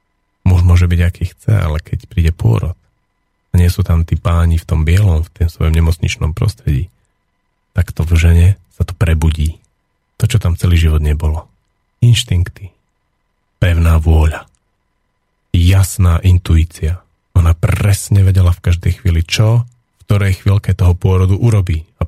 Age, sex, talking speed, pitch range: 40-59, male, 145 wpm, 85-100 Hz